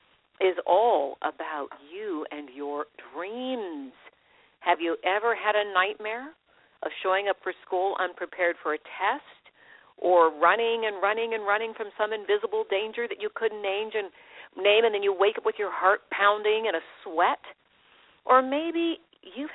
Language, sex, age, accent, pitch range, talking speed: English, female, 50-69, American, 170-240 Hz, 155 wpm